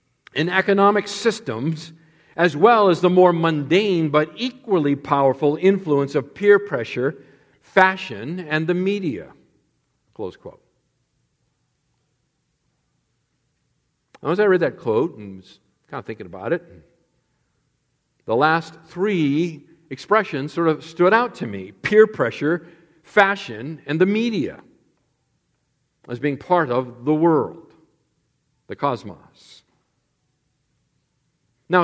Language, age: English, 50-69